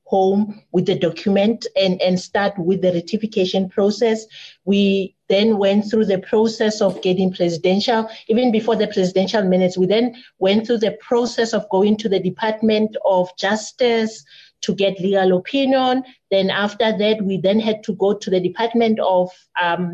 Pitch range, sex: 185-220 Hz, female